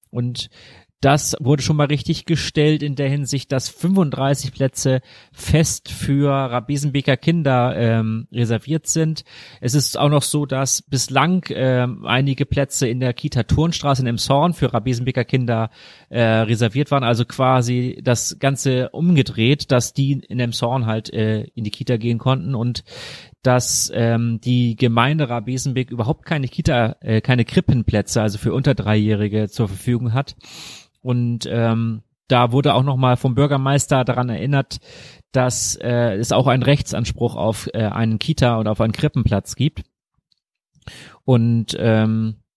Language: German